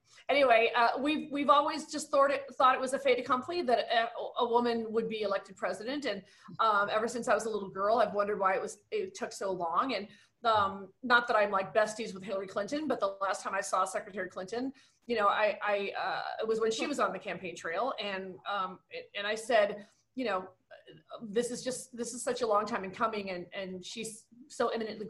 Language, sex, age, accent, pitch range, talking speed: English, female, 30-49, American, 205-250 Hz, 230 wpm